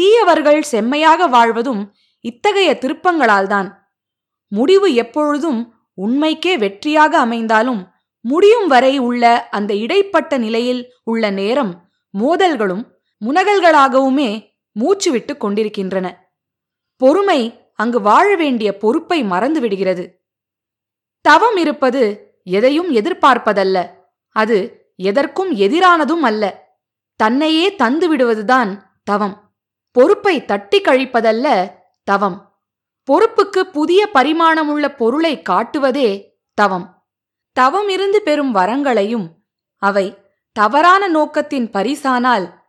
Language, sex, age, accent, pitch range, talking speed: Tamil, female, 20-39, native, 210-320 Hz, 80 wpm